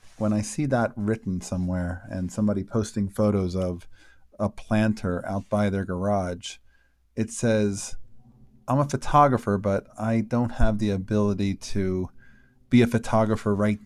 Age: 40-59